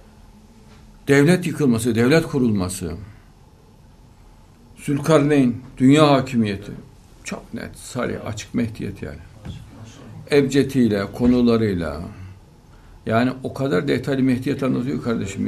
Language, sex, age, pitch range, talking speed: Turkish, male, 60-79, 95-135 Hz, 85 wpm